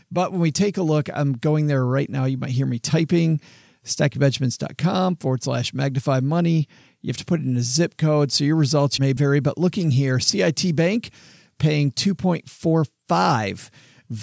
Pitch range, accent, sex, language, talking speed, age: 130-160 Hz, American, male, English, 180 wpm, 40-59